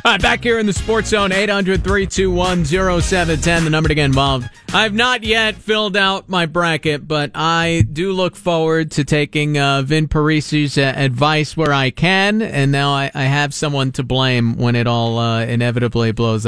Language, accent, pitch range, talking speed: English, American, 150-200 Hz, 210 wpm